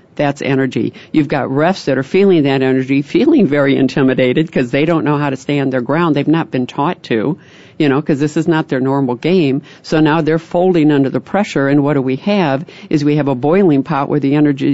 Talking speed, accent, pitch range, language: 230 wpm, American, 135-160 Hz, English